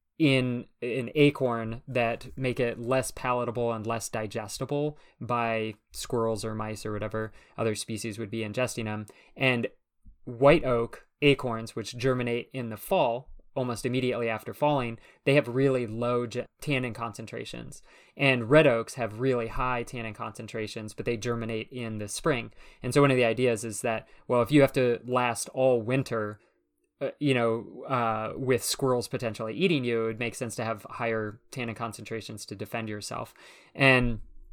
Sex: male